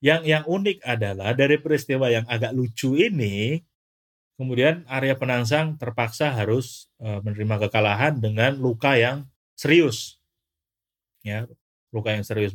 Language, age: Indonesian, 30-49